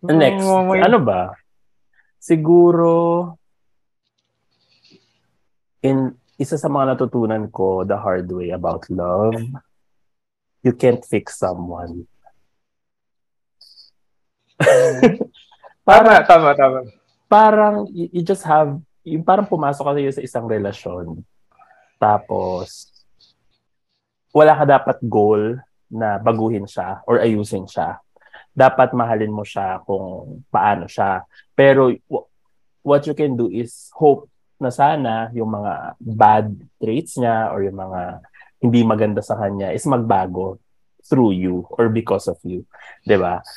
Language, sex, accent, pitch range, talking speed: English, male, Filipino, 105-145 Hz, 110 wpm